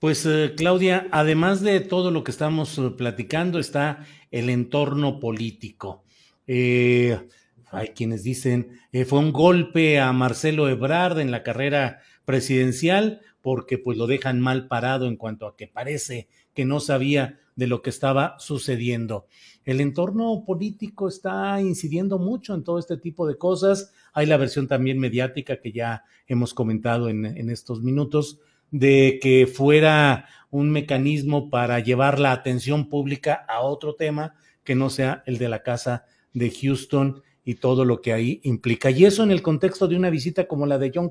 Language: Spanish